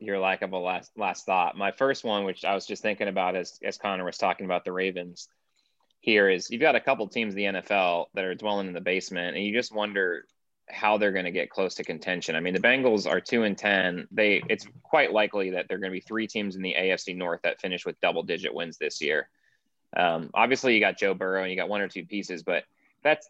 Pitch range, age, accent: 90-105 Hz, 20-39, American